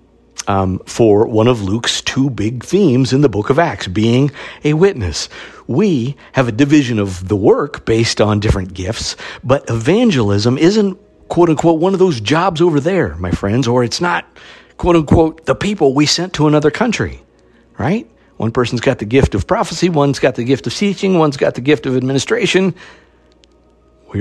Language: English